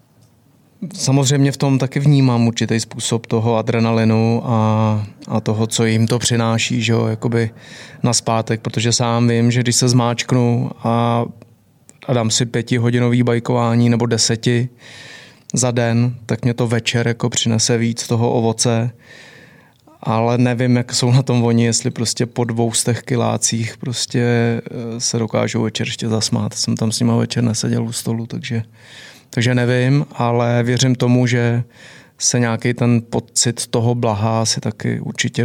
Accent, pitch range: native, 115-125 Hz